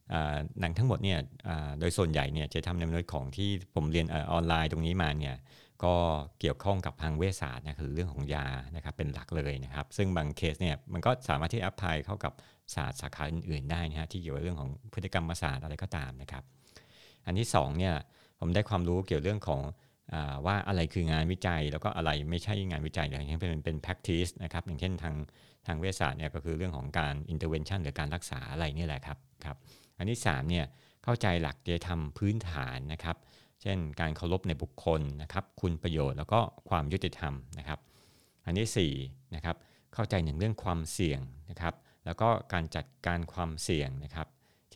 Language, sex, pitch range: Thai, male, 75-95 Hz